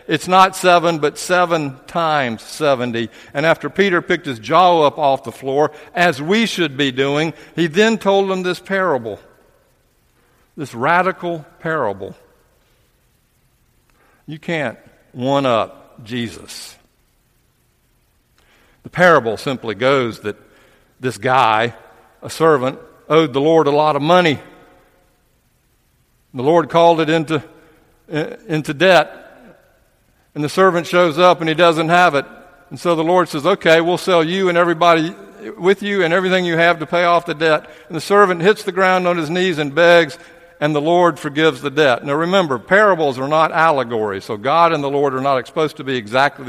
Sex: male